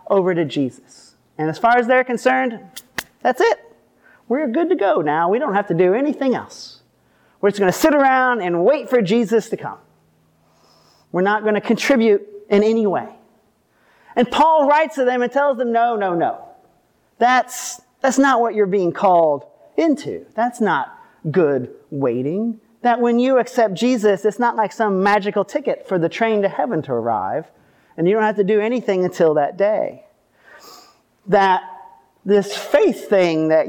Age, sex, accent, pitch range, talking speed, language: 40-59, male, American, 180-240 Hz, 175 wpm, English